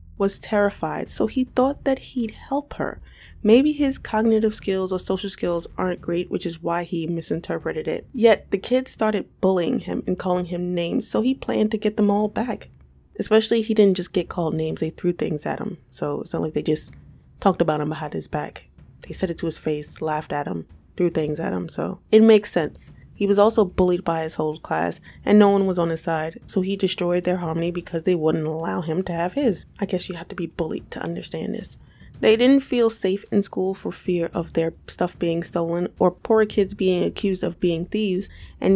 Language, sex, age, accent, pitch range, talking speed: English, female, 20-39, American, 170-215 Hz, 220 wpm